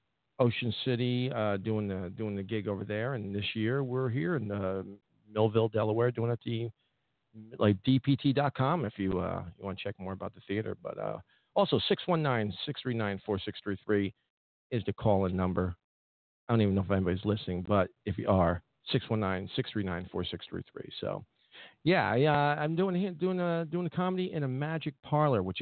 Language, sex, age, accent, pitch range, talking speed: English, male, 50-69, American, 90-120 Hz, 175 wpm